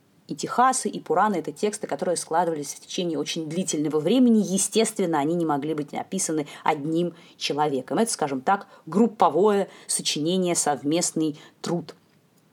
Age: 20-39